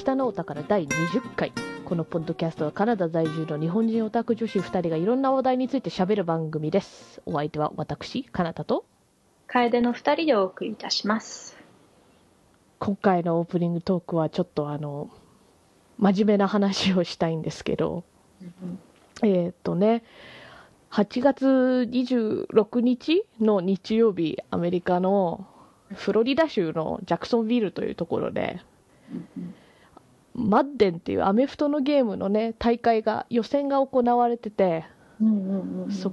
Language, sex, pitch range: Japanese, female, 170-230 Hz